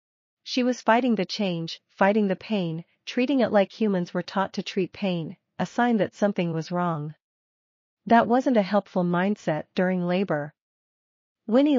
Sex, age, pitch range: female, 40-59, 175-215 Hz